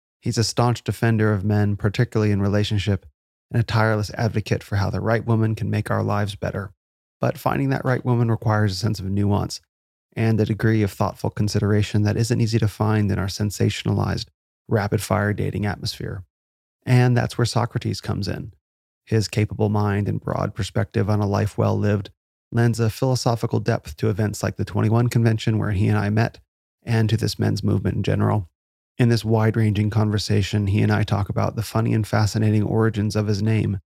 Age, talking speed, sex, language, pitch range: 30-49, 185 wpm, male, English, 105-115 Hz